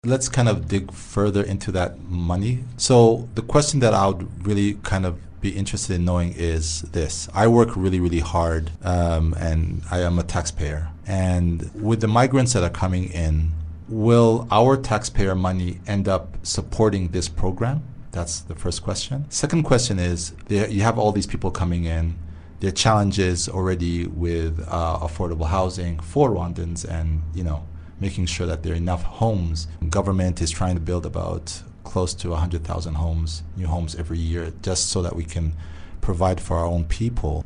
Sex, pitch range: male, 85-105 Hz